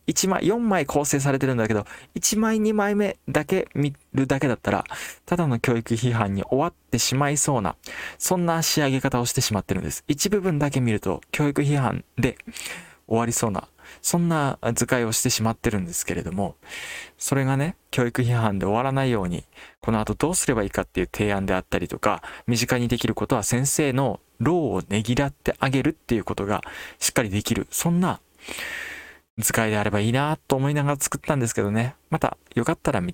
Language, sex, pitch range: Japanese, male, 105-145 Hz